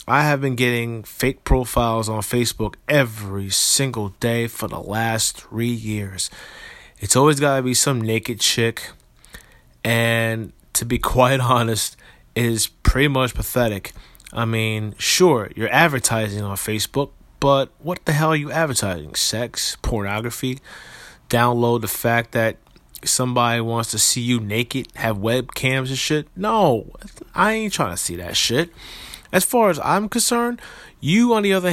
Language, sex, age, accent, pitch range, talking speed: English, male, 20-39, American, 110-140 Hz, 155 wpm